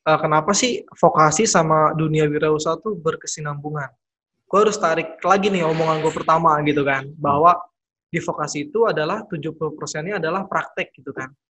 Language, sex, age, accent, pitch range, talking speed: Indonesian, male, 20-39, native, 155-195 Hz, 155 wpm